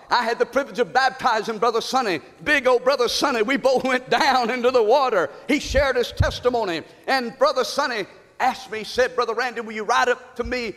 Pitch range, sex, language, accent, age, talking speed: 235-275 Hz, male, English, American, 50-69, 210 wpm